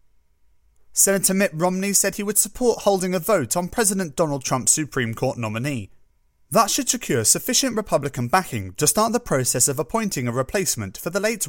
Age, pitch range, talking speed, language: 30-49, 125-195 Hz, 180 wpm, English